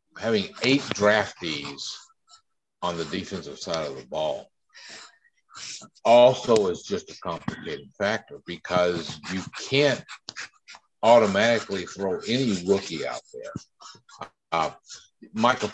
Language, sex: English, male